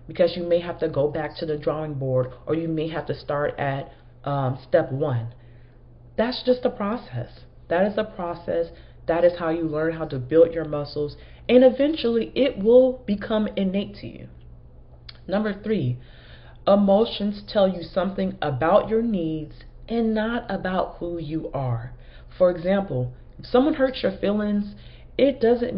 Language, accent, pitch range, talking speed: English, American, 135-210 Hz, 165 wpm